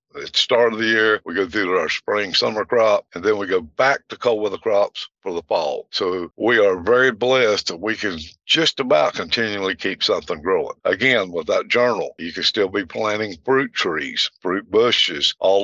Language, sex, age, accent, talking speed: English, male, 60-79, American, 205 wpm